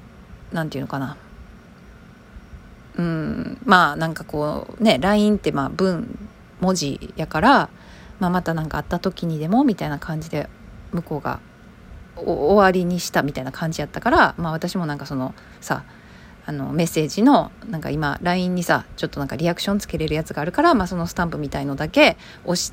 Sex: female